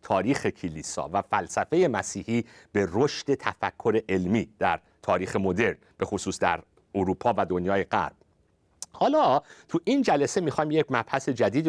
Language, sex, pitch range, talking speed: Persian, male, 110-160 Hz, 140 wpm